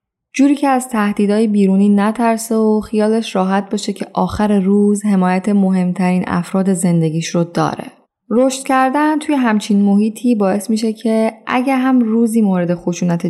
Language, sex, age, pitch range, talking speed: Persian, female, 10-29, 180-225 Hz, 145 wpm